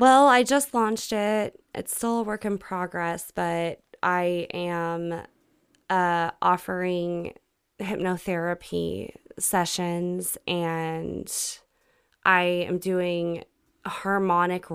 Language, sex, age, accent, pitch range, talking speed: English, female, 20-39, American, 175-210 Hz, 95 wpm